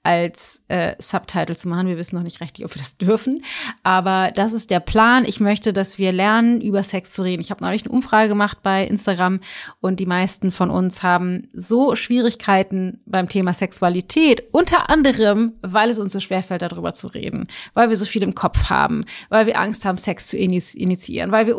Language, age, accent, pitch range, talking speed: German, 30-49, German, 185-230 Hz, 205 wpm